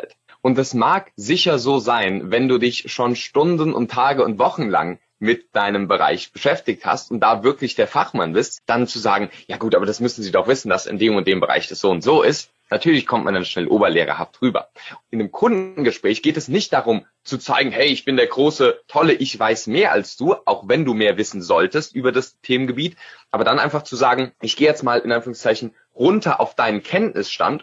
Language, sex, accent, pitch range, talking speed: German, male, German, 110-140 Hz, 215 wpm